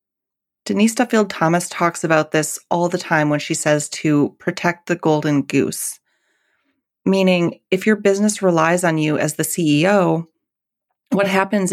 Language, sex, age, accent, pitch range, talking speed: English, female, 30-49, American, 160-200 Hz, 145 wpm